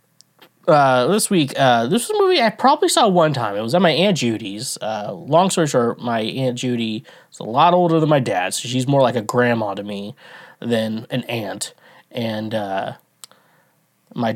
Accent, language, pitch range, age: American, English, 110-145 Hz, 20-39